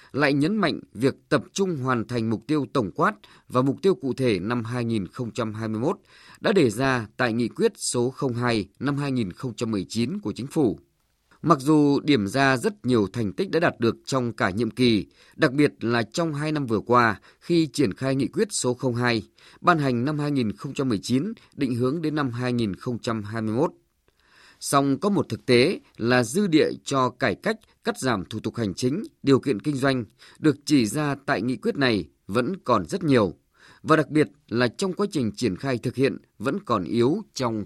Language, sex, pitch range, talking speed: Vietnamese, male, 115-150 Hz, 190 wpm